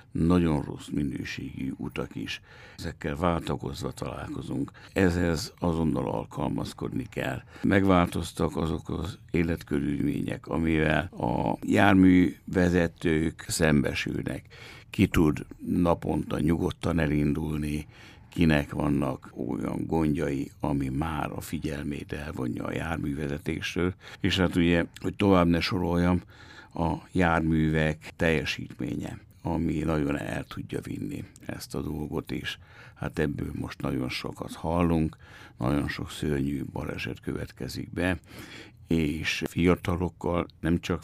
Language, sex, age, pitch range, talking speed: Hungarian, male, 60-79, 75-90 Hz, 105 wpm